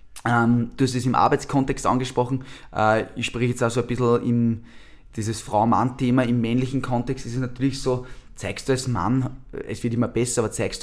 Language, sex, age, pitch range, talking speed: German, male, 20-39, 110-130 Hz, 185 wpm